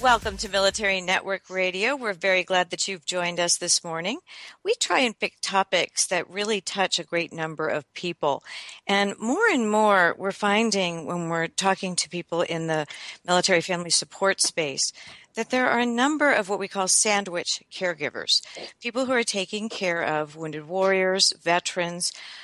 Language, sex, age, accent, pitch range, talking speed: English, female, 50-69, American, 170-215 Hz, 170 wpm